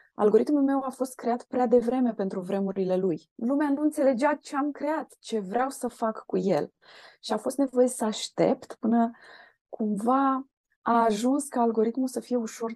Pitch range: 195-245 Hz